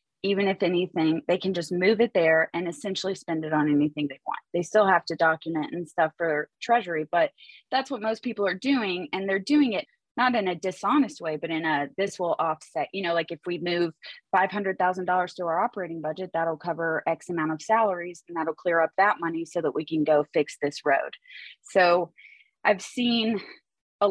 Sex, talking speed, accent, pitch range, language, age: female, 205 wpm, American, 160-205 Hz, English, 20-39